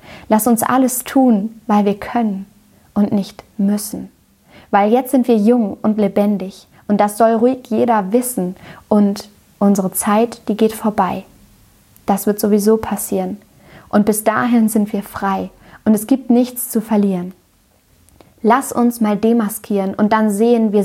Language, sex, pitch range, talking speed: German, female, 200-225 Hz, 155 wpm